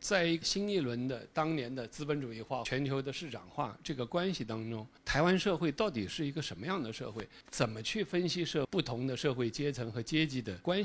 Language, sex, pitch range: Chinese, male, 120-165 Hz